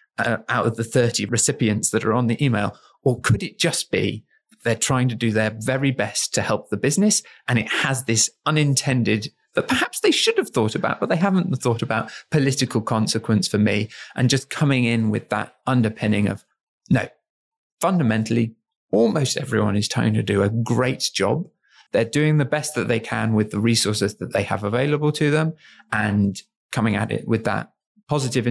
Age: 30-49